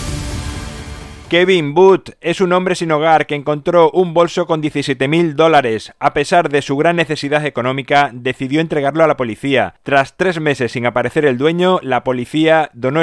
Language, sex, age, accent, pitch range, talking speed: Spanish, male, 30-49, Spanish, 120-155 Hz, 170 wpm